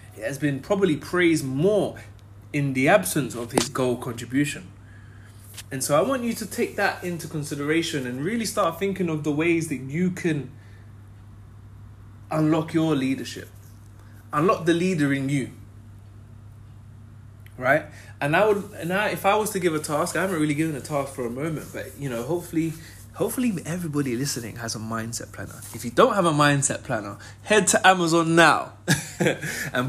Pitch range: 110-165 Hz